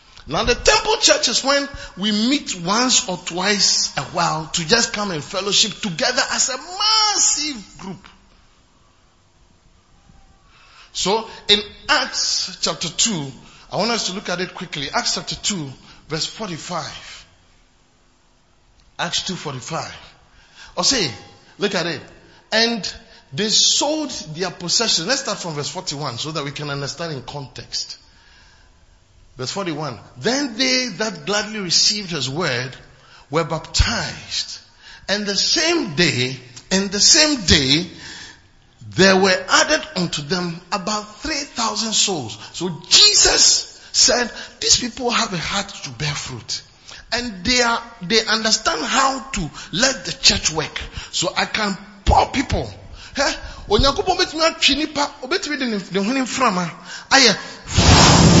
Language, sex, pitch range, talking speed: English, male, 155-235 Hz, 125 wpm